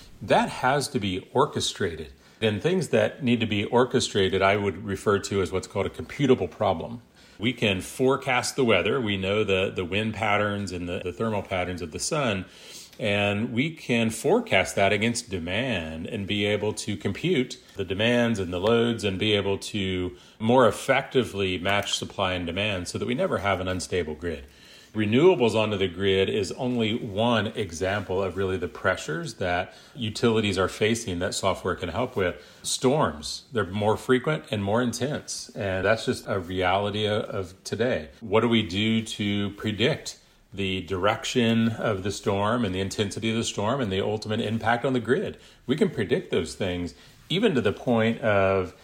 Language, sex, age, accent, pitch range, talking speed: English, male, 40-59, American, 95-115 Hz, 180 wpm